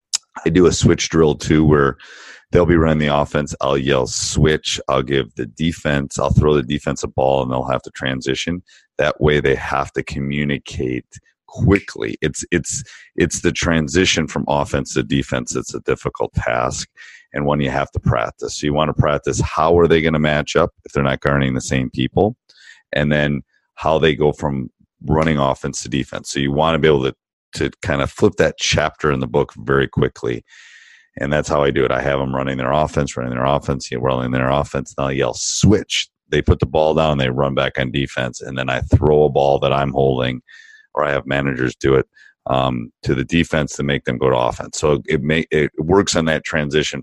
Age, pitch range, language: 40-59, 65-75 Hz, English